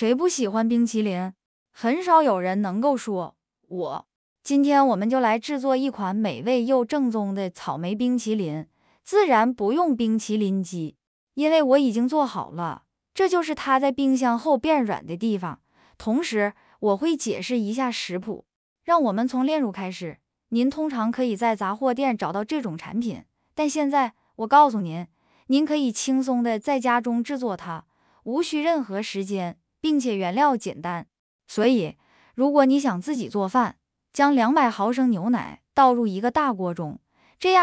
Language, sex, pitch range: English, female, 205-280 Hz